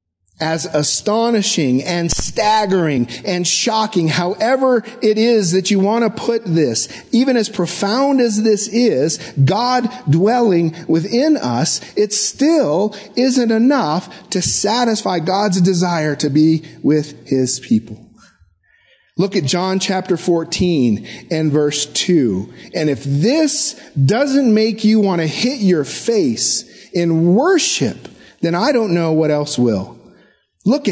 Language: English